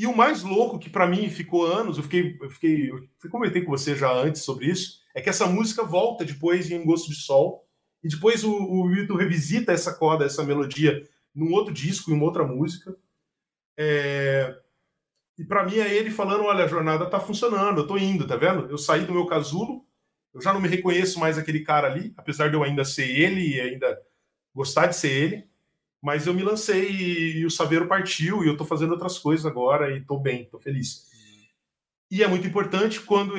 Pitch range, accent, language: 150-190 Hz, Brazilian, Portuguese